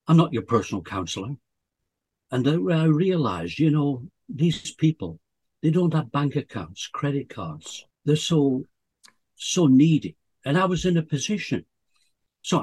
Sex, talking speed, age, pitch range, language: male, 145 wpm, 60-79, 100-150 Hz, English